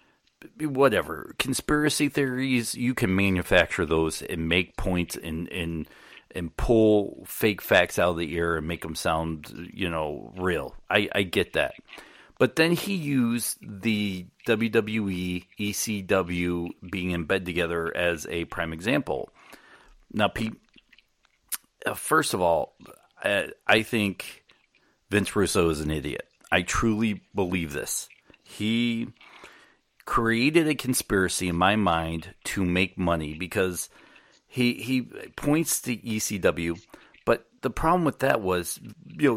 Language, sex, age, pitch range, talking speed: English, male, 40-59, 90-120 Hz, 130 wpm